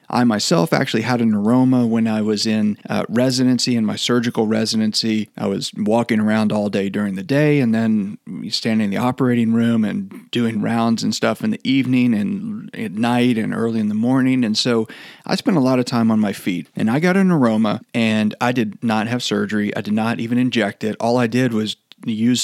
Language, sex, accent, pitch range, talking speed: English, male, American, 110-135 Hz, 215 wpm